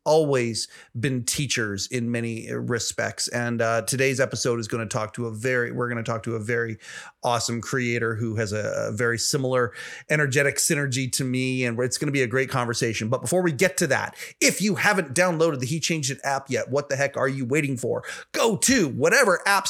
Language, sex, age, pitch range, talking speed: English, male, 30-49, 125-155 Hz, 215 wpm